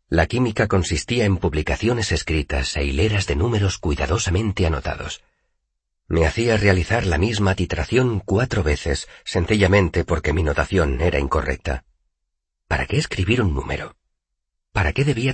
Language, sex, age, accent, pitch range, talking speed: Spanish, male, 40-59, Spanish, 70-95 Hz, 135 wpm